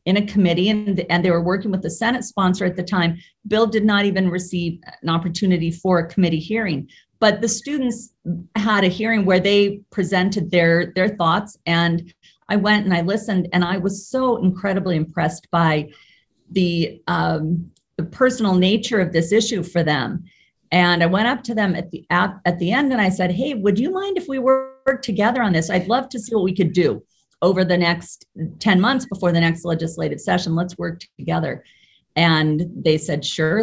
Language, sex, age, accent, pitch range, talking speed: English, female, 40-59, American, 170-210 Hz, 200 wpm